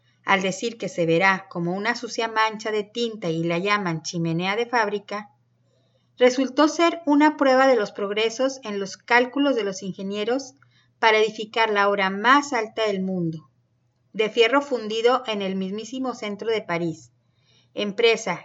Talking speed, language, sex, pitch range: 155 wpm, Spanish, female, 180-235 Hz